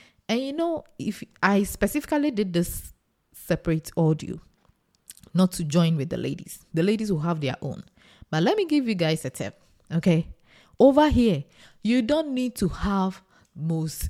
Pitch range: 165-230 Hz